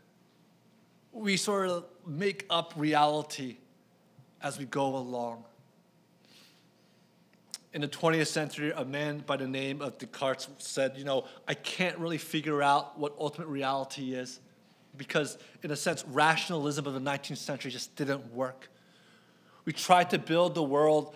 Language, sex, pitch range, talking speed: English, male, 140-175 Hz, 145 wpm